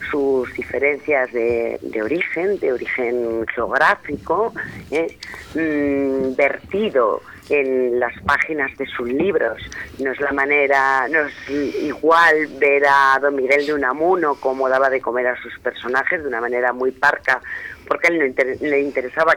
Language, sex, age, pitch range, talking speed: Spanish, female, 40-59, 125-145 Hz, 150 wpm